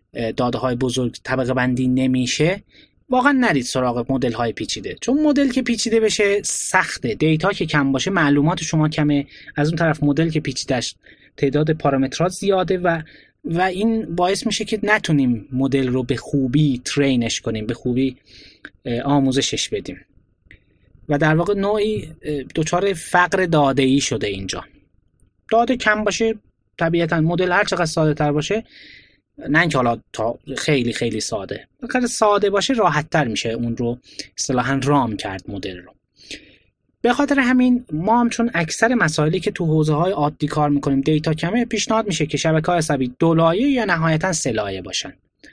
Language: Persian